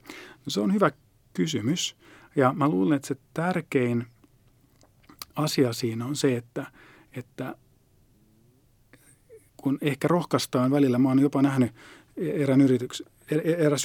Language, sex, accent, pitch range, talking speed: Finnish, male, native, 125-145 Hz, 125 wpm